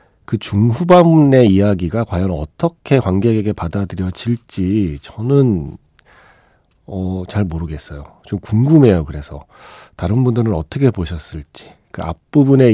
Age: 40-59